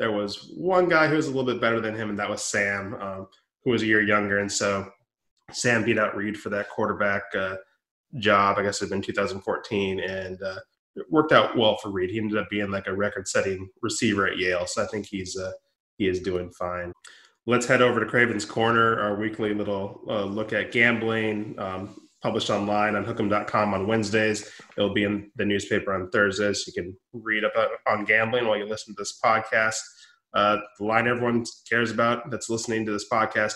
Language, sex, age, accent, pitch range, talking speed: English, male, 20-39, American, 100-115 Hz, 210 wpm